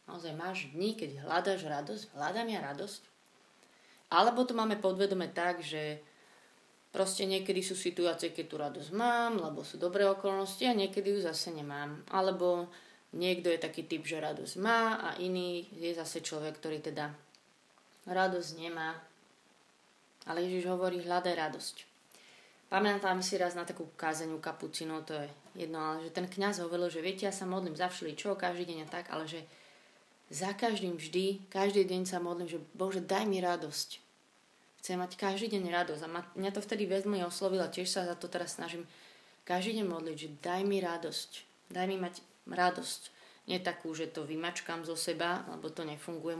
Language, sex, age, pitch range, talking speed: Slovak, female, 20-39, 165-195 Hz, 175 wpm